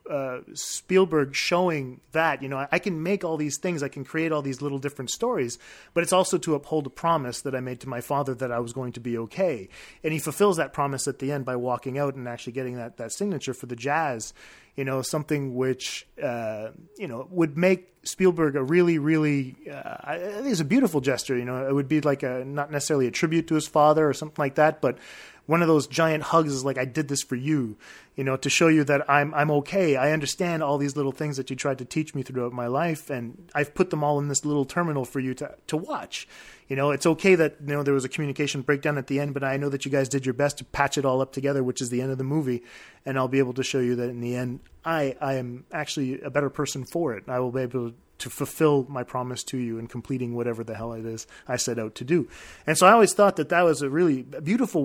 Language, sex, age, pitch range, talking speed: English, male, 30-49, 130-155 Hz, 265 wpm